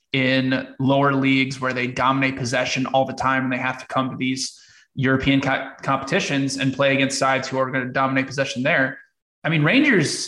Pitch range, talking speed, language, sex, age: 130-145 Hz, 195 wpm, English, male, 20-39